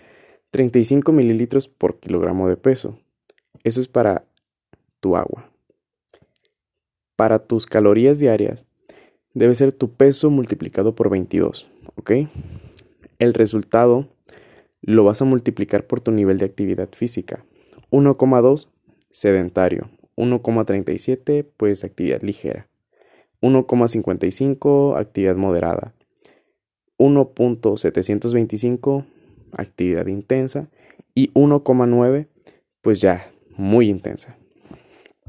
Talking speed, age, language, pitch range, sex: 90 wpm, 20-39, Spanish, 100-125 Hz, male